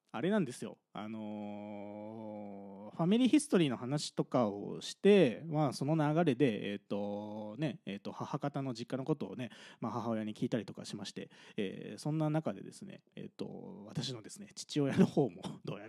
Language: Japanese